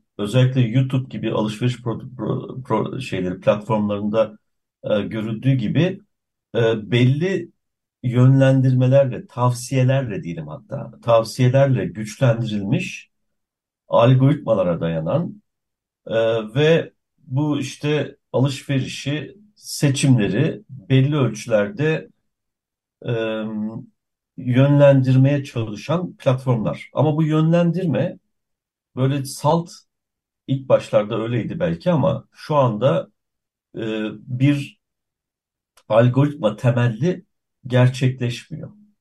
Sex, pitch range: male, 110-140 Hz